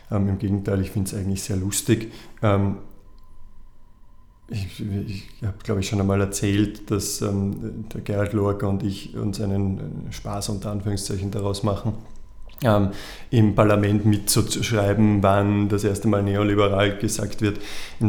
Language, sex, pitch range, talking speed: German, male, 100-120 Hz, 145 wpm